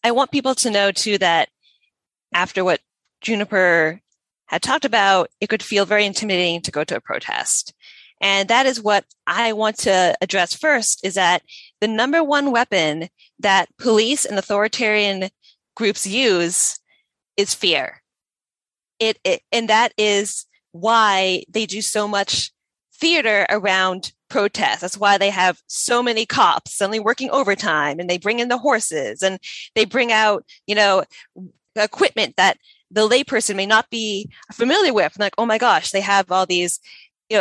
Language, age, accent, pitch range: English, 20-39, American, 190-230 Hz